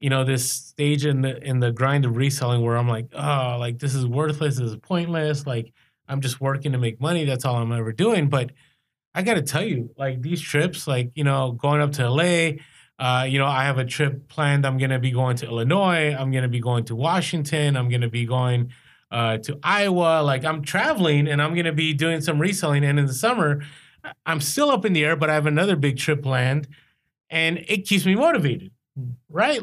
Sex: male